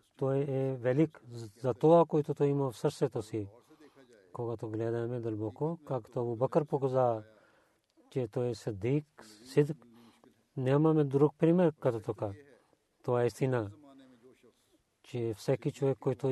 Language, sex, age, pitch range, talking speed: Bulgarian, male, 40-59, 115-145 Hz, 120 wpm